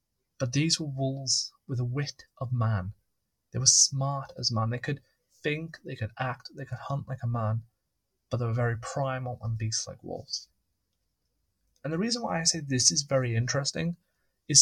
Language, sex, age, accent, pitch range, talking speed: English, male, 30-49, British, 115-145 Hz, 185 wpm